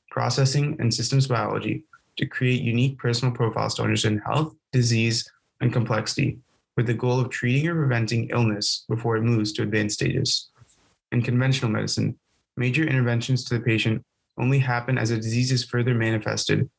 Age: 20-39